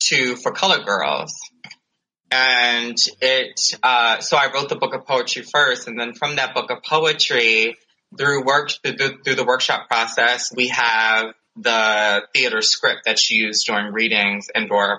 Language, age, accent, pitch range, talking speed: English, 20-39, American, 110-135 Hz, 160 wpm